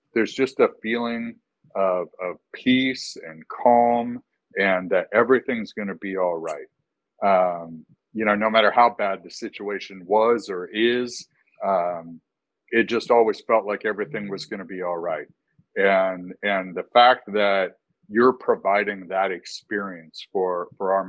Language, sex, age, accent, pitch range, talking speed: English, male, 50-69, American, 90-105 Hz, 155 wpm